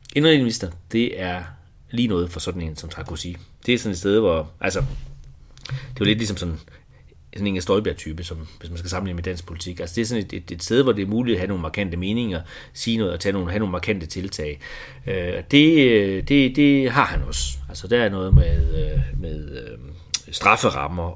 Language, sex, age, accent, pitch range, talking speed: Danish, male, 30-49, native, 85-110 Hz, 210 wpm